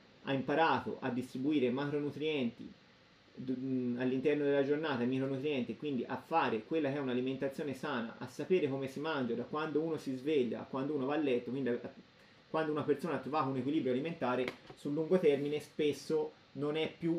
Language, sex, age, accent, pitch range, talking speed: Italian, male, 30-49, native, 125-150 Hz, 170 wpm